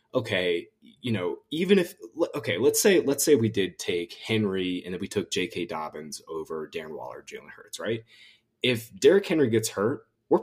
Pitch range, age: 95-130 Hz, 20-39